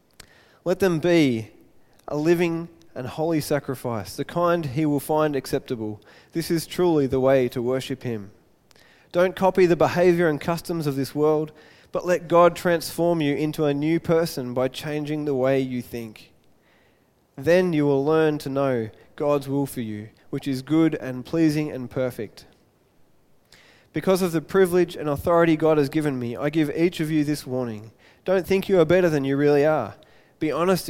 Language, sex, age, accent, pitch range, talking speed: English, male, 20-39, Australian, 135-165 Hz, 175 wpm